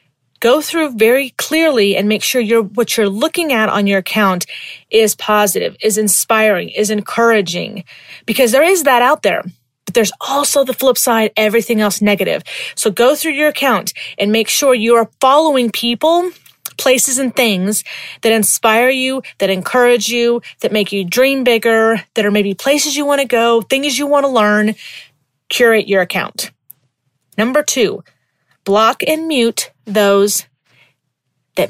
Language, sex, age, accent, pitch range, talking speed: English, female, 30-49, American, 200-265 Hz, 155 wpm